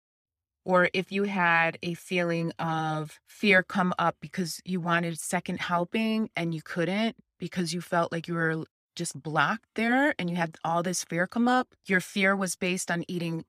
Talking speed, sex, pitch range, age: 180 wpm, female, 165-195 Hz, 30-49